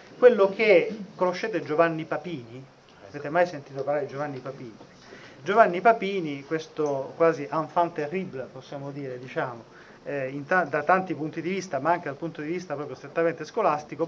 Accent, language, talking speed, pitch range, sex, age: native, Italian, 160 wpm, 155-210 Hz, male, 30-49